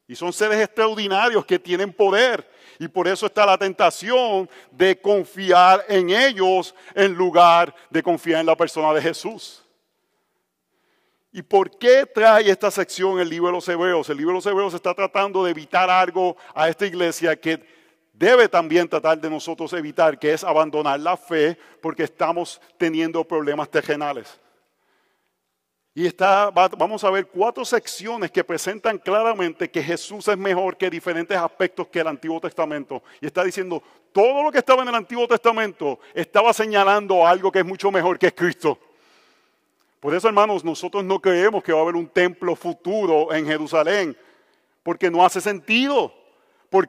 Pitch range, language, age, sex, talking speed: 165-205 Hz, Spanish, 50-69, male, 165 wpm